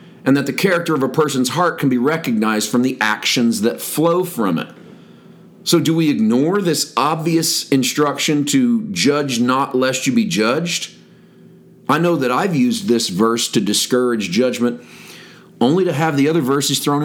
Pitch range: 130-170 Hz